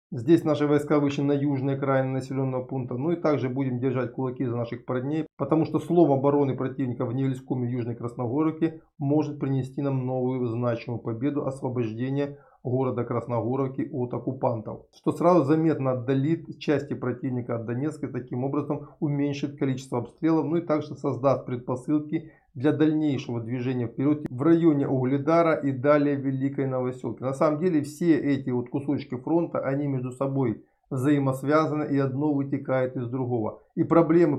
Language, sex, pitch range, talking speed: Russian, male, 130-150 Hz, 155 wpm